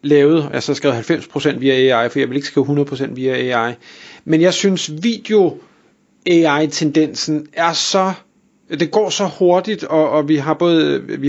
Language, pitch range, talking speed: Danish, 140-165 Hz, 165 wpm